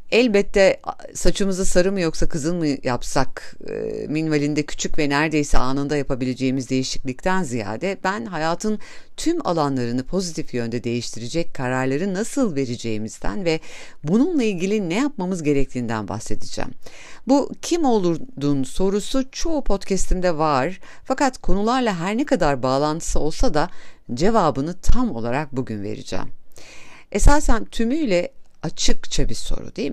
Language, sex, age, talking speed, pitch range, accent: Turkish, female, 50-69, 120 wpm, 130-215 Hz, native